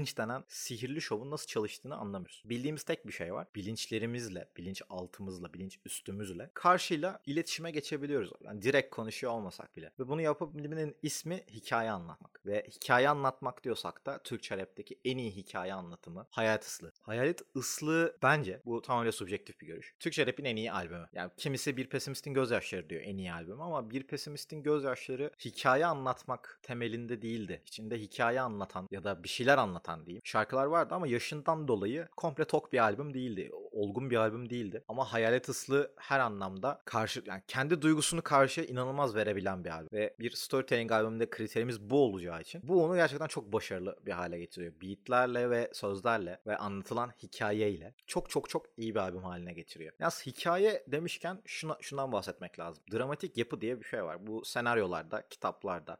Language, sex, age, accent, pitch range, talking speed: Turkish, male, 30-49, native, 100-145 Hz, 170 wpm